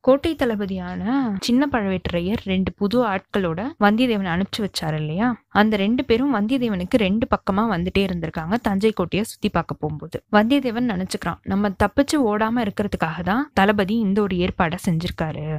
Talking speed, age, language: 115 wpm, 20-39, Tamil